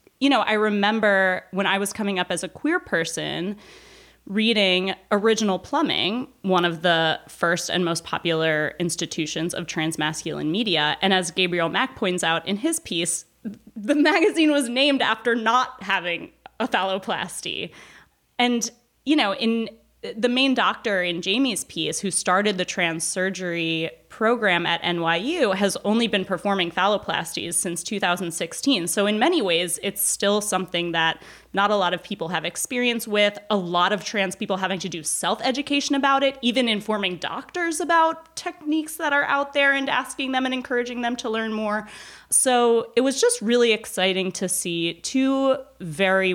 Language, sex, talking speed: English, female, 160 wpm